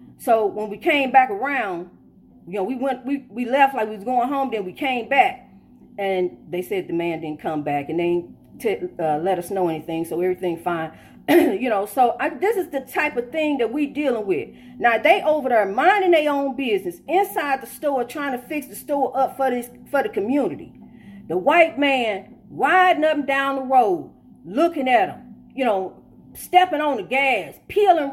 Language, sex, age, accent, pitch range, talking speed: English, female, 40-59, American, 245-365 Hz, 205 wpm